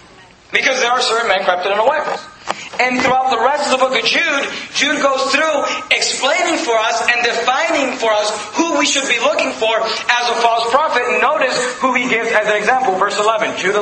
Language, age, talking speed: English, 40-59, 210 wpm